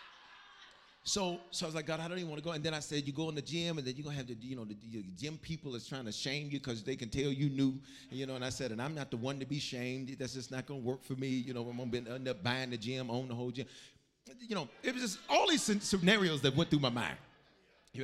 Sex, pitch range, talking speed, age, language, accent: male, 110-145 Hz, 315 wpm, 40-59, English, American